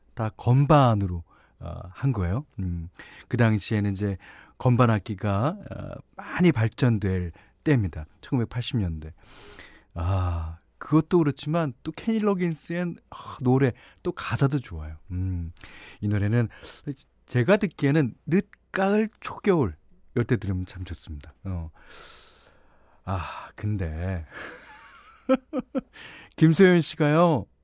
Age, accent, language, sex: 40-59, native, Korean, male